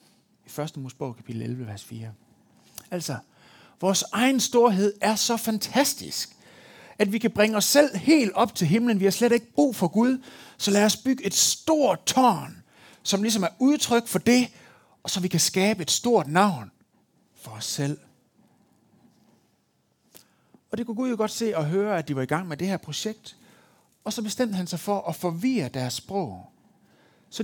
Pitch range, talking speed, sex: 175-235 Hz, 185 wpm, male